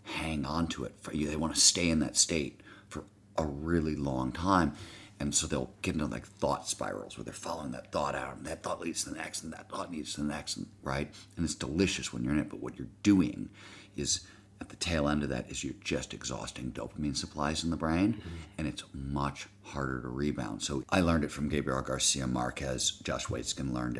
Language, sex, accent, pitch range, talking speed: English, male, American, 65-80 Hz, 225 wpm